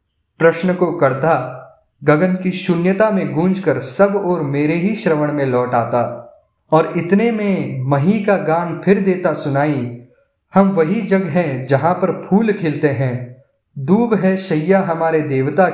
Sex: male